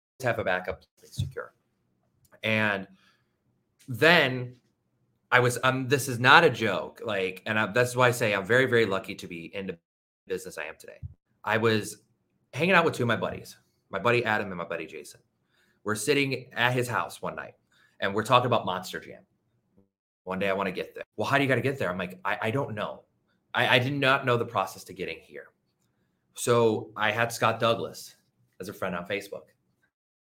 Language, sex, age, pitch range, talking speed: English, male, 30-49, 95-125 Hz, 200 wpm